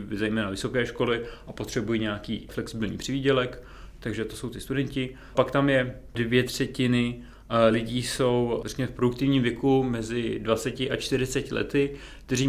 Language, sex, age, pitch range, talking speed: Czech, male, 30-49, 115-130 Hz, 140 wpm